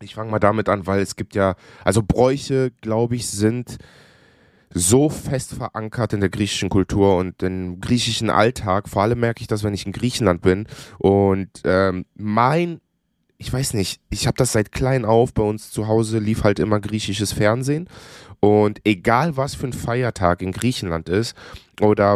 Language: German